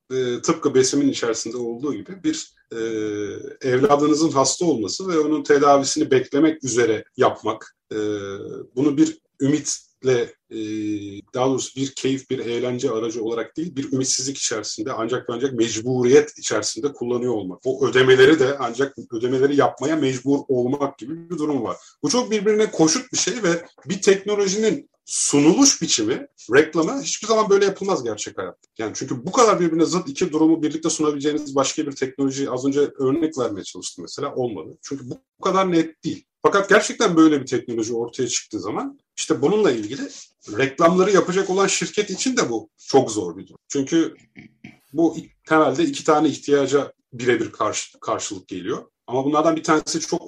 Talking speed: 160 wpm